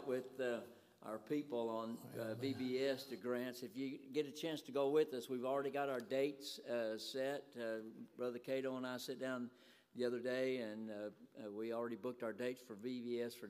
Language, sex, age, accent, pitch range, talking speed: English, male, 60-79, American, 120-140 Hz, 200 wpm